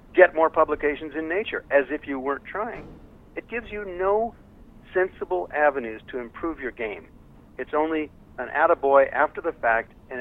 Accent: American